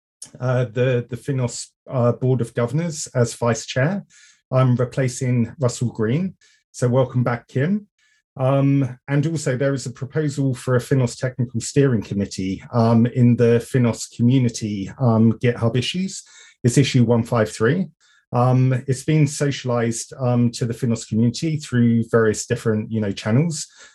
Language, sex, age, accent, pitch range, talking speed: English, male, 30-49, British, 115-135 Hz, 145 wpm